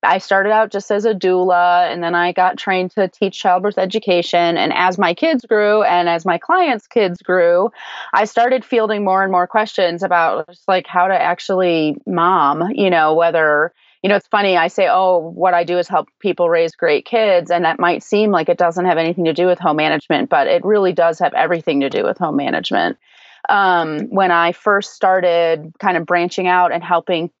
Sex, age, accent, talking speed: female, 30-49, American, 210 wpm